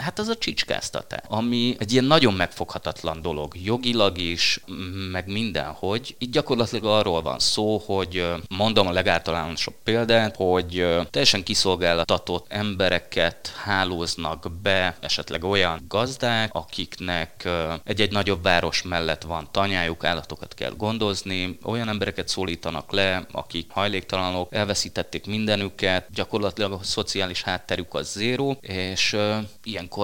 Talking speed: 120 wpm